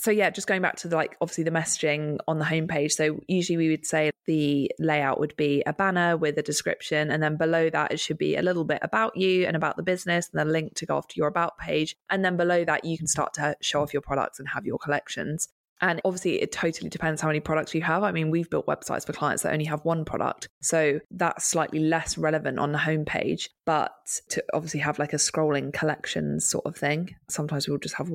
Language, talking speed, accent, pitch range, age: English, 245 wpm, British, 145-165 Hz, 20-39